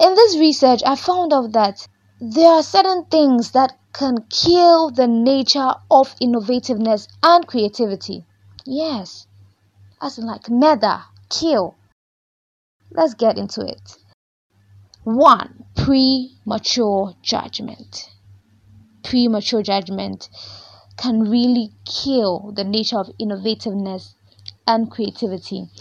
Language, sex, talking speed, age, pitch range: English, female, 100 wpm, 20-39, 195-245 Hz